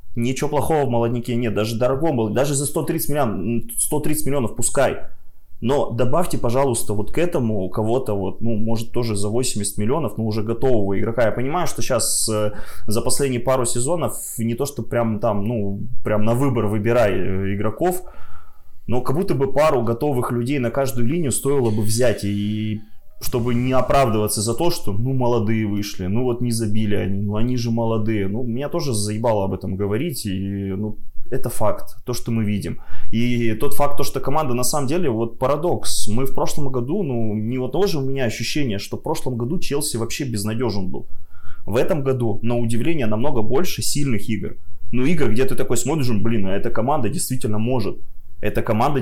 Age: 20-39